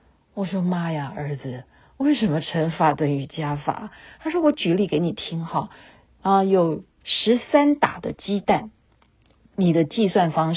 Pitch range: 145-190 Hz